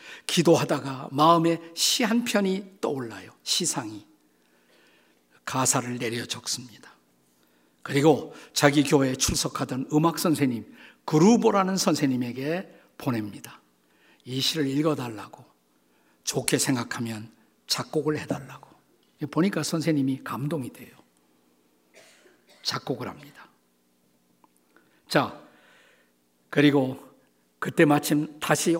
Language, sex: Korean, male